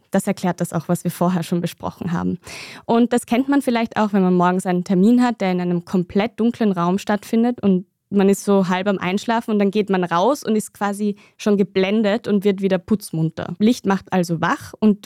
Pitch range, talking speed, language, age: 180-210 Hz, 220 wpm, German, 20-39